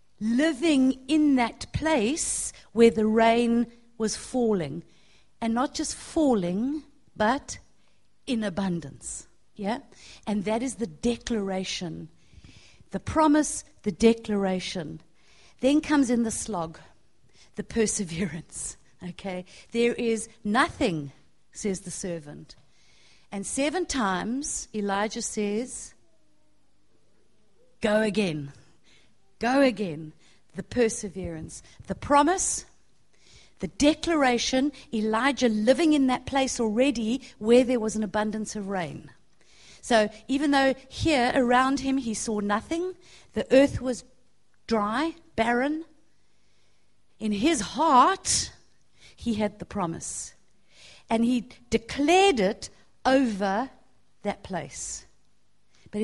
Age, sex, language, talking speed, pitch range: 50-69, female, English, 105 wpm, 195-265 Hz